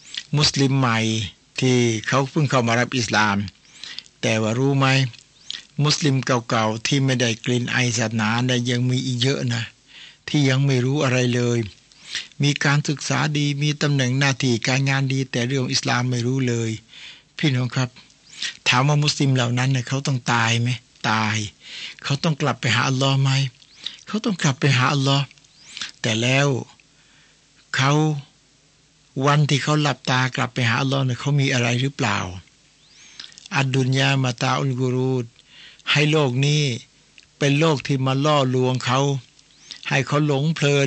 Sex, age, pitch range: male, 60-79, 125-145 Hz